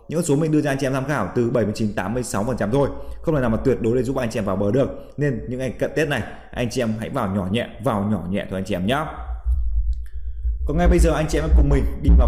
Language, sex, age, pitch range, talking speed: Vietnamese, male, 20-39, 100-135 Hz, 295 wpm